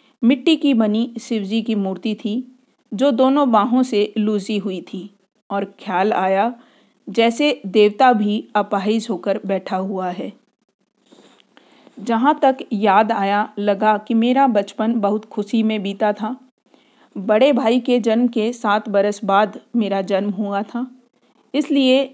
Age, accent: 40-59, native